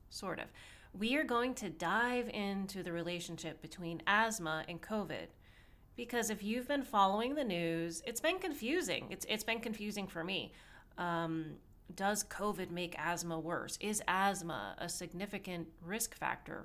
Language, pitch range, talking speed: English, 170-220 Hz, 150 wpm